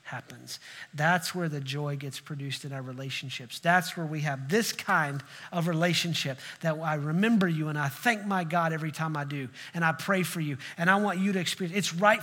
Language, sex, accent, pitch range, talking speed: English, male, American, 150-195 Hz, 215 wpm